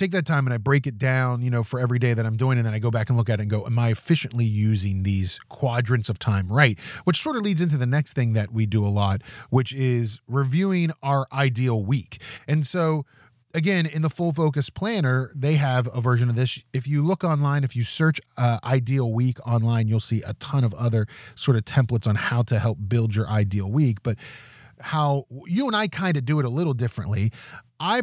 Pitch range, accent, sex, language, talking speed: 110-145 Hz, American, male, English, 235 wpm